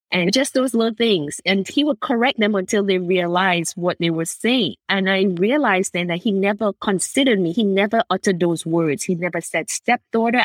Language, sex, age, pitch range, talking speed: English, female, 20-39, 175-205 Hz, 200 wpm